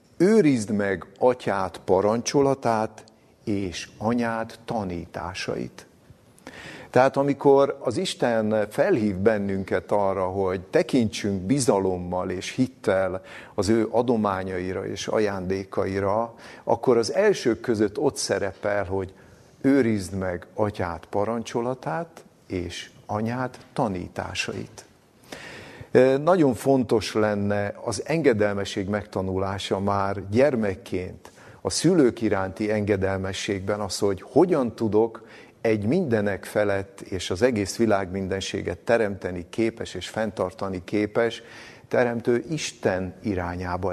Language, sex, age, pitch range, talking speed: Hungarian, male, 50-69, 95-115 Hz, 95 wpm